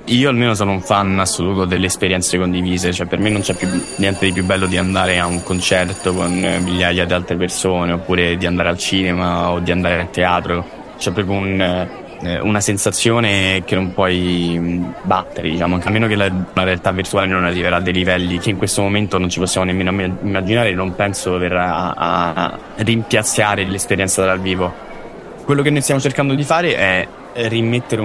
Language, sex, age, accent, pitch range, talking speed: Italian, male, 20-39, native, 90-100 Hz, 190 wpm